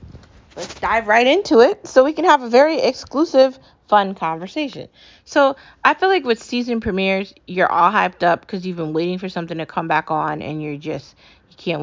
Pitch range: 155-195 Hz